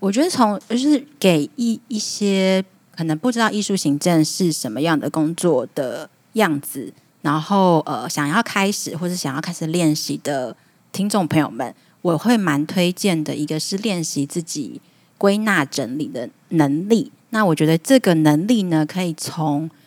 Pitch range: 155-200 Hz